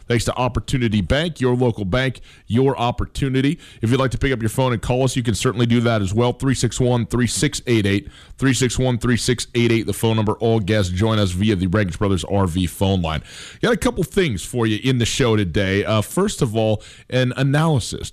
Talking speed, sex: 195 wpm, male